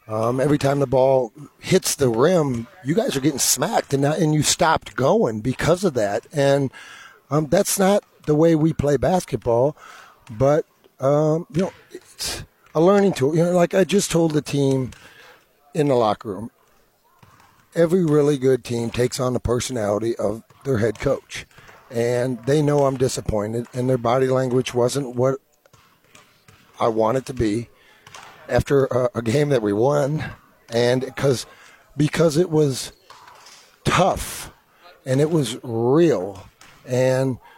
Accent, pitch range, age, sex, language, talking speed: American, 130-165 Hz, 50-69, male, English, 160 wpm